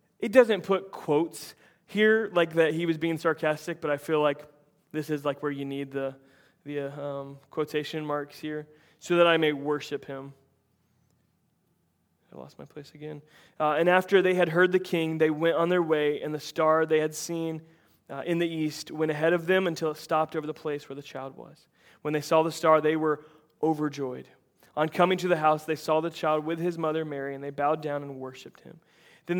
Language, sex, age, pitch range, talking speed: English, male, 20-39, 145-165 Hz, 210 wpm